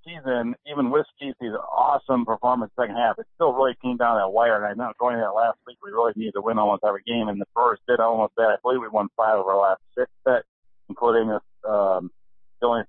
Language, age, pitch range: English, 50-69, 105-135 Hz